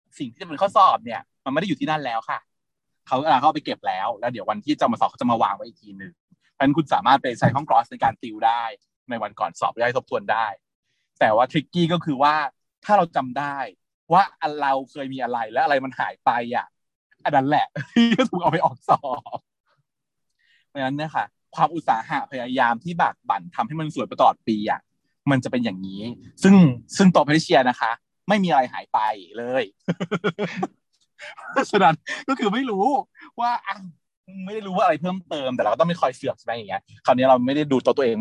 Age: 20-39